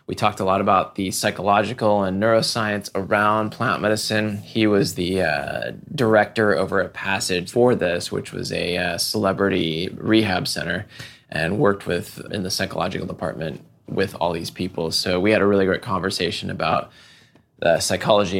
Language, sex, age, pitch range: English, male, 20-39, 95-110 Hz